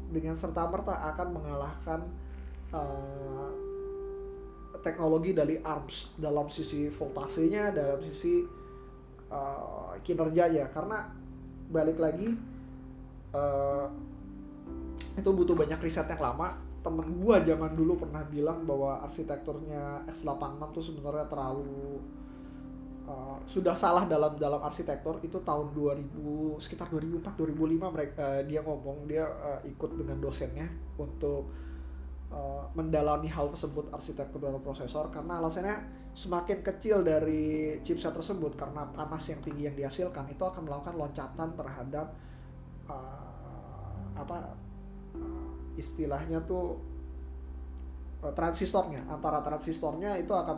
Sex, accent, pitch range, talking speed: male, native, 140-165 Hz, 110 wpm